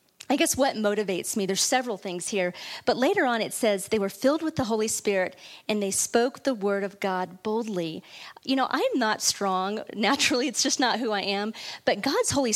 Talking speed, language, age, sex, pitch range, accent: 210 wpm, English, 40-59, female, 195-260 Hz, American